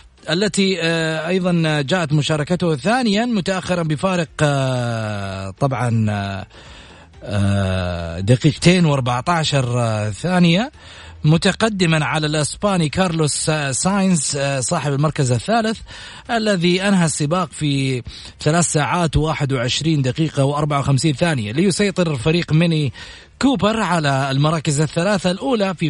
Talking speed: 90 wpm